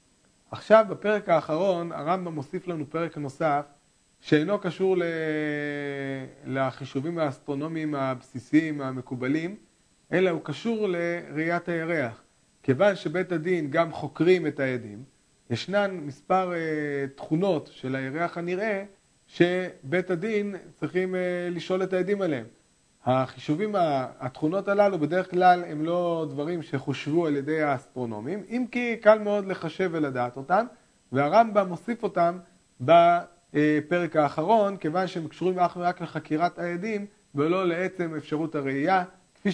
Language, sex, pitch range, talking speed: Hebrew, male, 150-185 Hz, 115 wpm